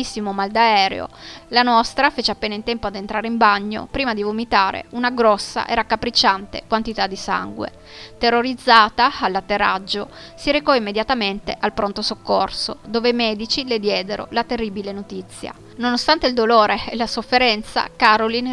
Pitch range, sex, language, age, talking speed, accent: 205-240 Hz, female, Italian, 20-39, 145 wpm, native